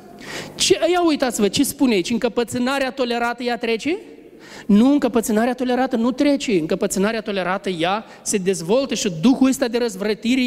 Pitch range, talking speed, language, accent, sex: 205-260 Hz, 145 wpm, Romanian, native, male